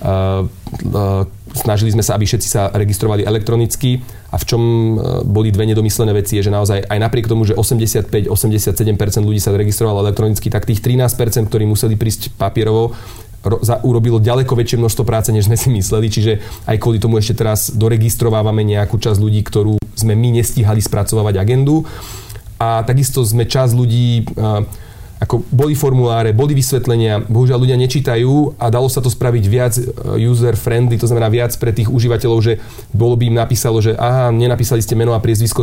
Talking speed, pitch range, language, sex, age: 175 wpm, 110-125 Hz, Slovak, male, 30-49